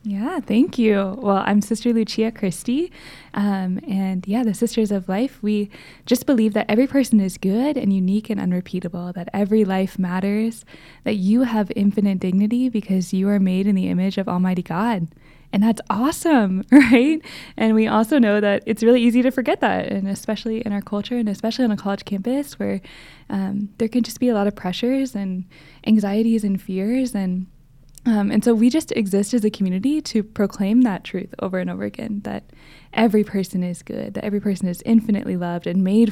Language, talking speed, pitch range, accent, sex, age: English, 195 wpm, 190-225 Hz, American, female, 10-29